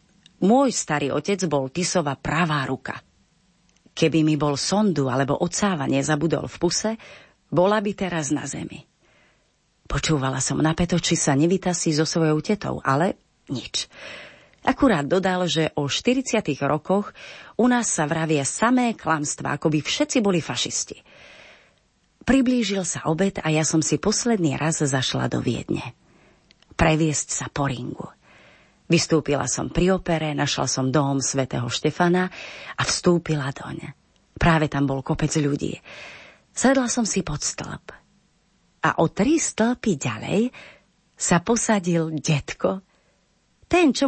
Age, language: 30-49, Slovak